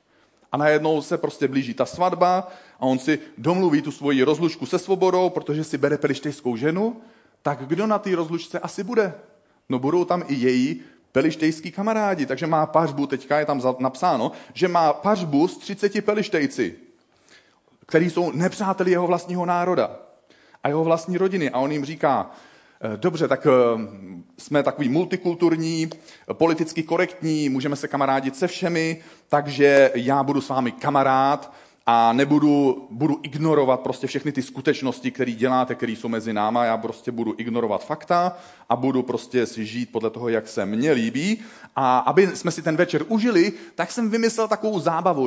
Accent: native